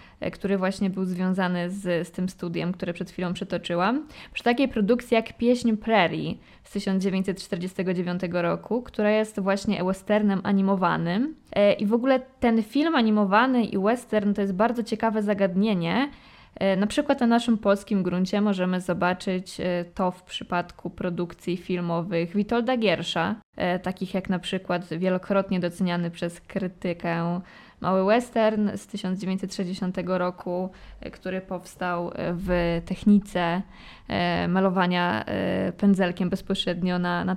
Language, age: Polish, 20-39